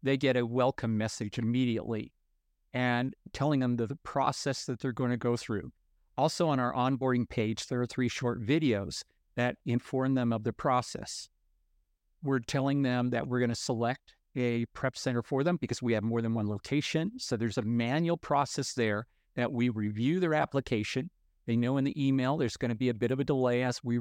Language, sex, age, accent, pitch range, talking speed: English, male, 50-69, American, 115-130 Hz, 195 wpm